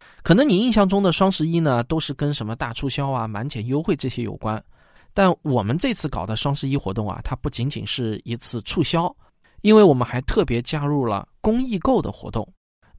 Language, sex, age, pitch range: Chinese, male, 20-39, 115-160 Hz